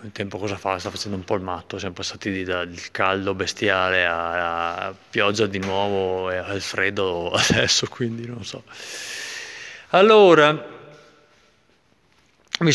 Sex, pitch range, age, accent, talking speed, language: male, 100-130 Hz, 30-49, native, 140 wpm, Italian